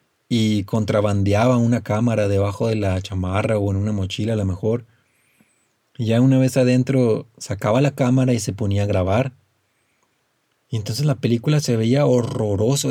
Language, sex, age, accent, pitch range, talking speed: Spanish, male, 30-49, Mexican, 105-125 Hz, 165 wpm